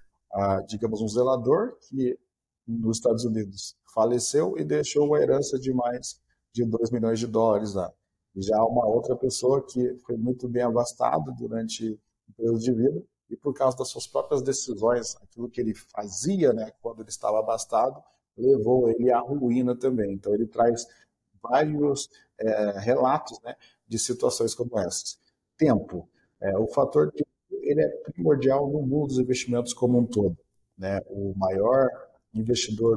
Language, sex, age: Portuguese, male, 50-69